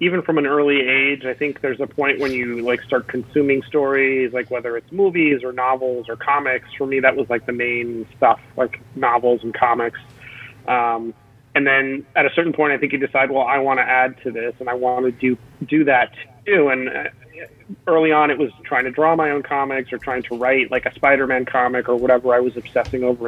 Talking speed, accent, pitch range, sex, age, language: 225 wpm, American, 120-140 Hz, male, 30-49, English